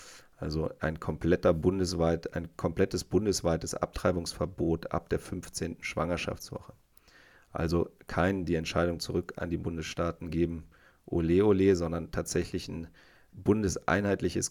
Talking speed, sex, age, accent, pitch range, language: 110 wpm, male, 30-49, German, 85-95 Hz, German